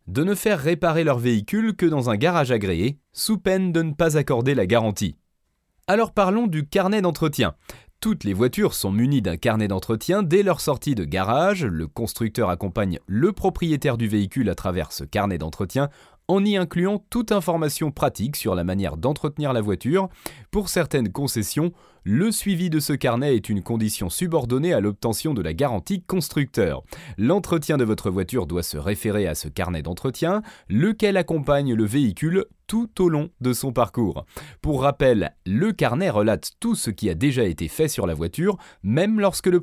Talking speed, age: 180 wpm, 30-49